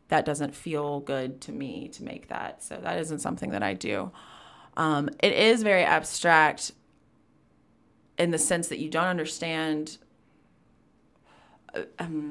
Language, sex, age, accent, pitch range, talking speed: English, female, 20-39, American, 145-160 Hz, 140 wpm